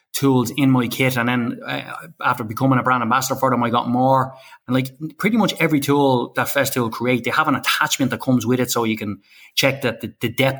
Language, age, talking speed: English, 20-39, 230 wpm